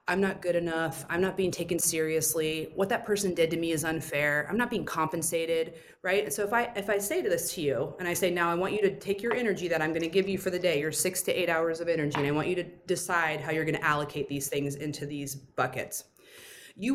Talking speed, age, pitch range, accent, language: 270 wpm, 30-49, 155-185 Hz, American, English